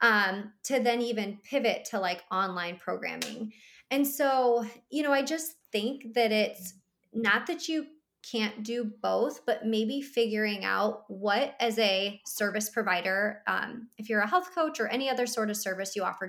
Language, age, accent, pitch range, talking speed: English, 20-39, American, 205-250 Hz, 175 wpm